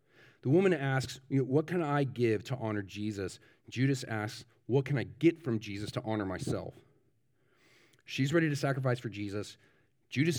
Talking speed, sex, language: 160 wpm, male, English